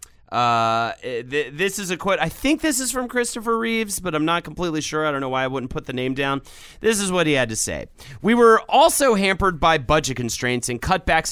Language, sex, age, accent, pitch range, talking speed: English, male, 30-49, American, 125-175 Hz, 235 wpm